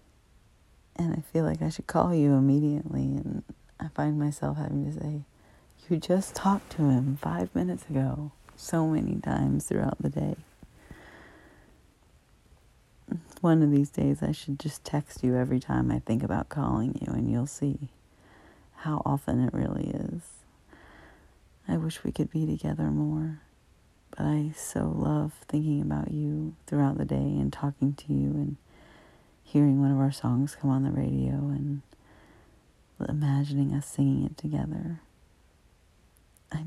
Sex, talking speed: female, 150 wpm